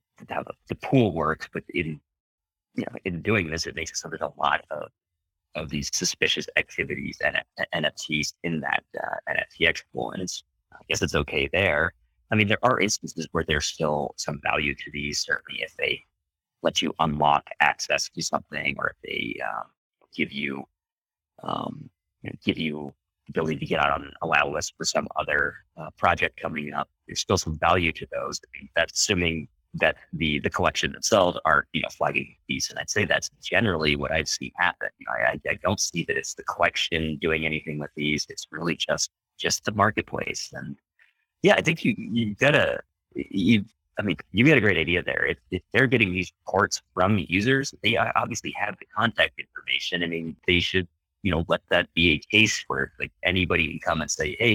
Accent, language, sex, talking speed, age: American, English, male, 200 wpm, 30-49